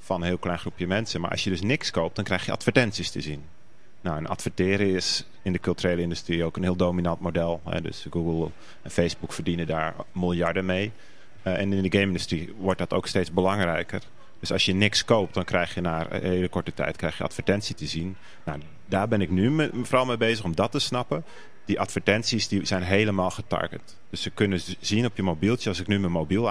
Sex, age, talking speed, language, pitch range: male, 40-59, 215 wpm, Dutch, 85-105 Hz